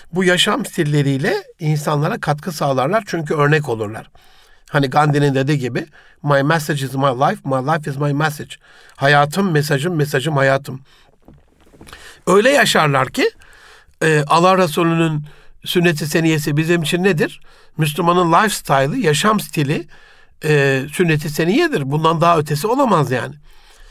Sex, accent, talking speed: male, native, 120 wpm